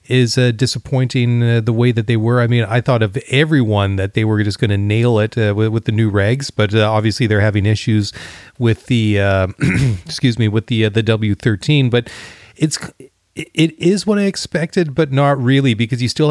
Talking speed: 215 wpm